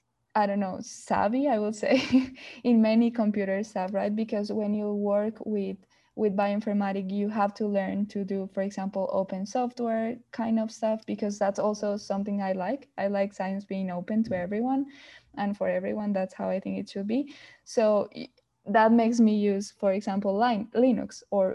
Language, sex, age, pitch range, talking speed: English, female, 10-29, 195-225 Hz, 180 wpm